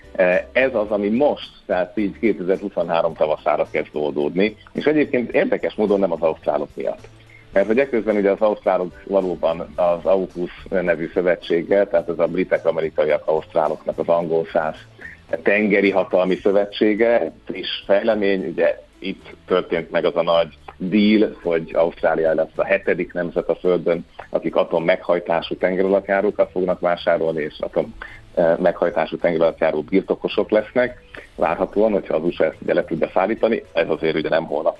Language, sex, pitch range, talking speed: Hungarian, male, 85-110 Hz, 145 wpm